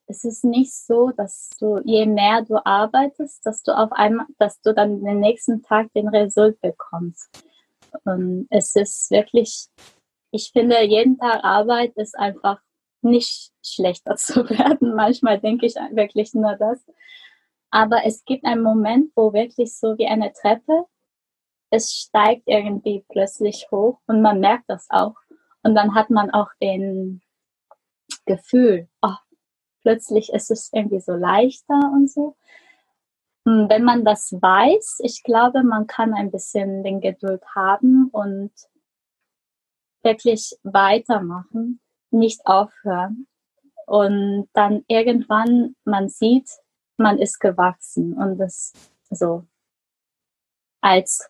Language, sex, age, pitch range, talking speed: German, female, 20-39, 200-245 Hz, 130 wpm